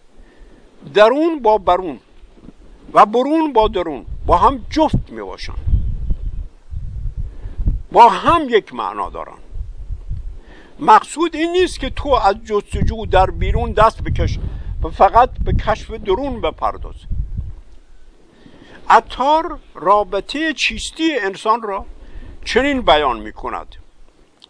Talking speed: 100 wpm